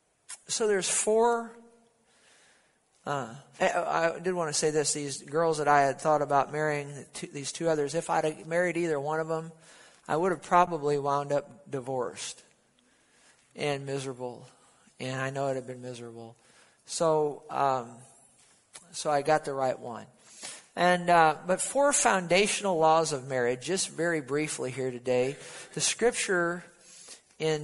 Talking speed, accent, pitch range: 150 wpm, American, 140-180 Hz